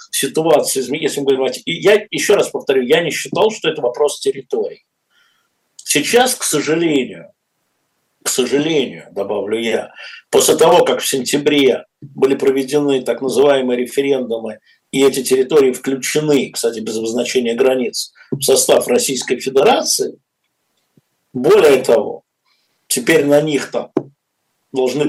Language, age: Russian, 50-69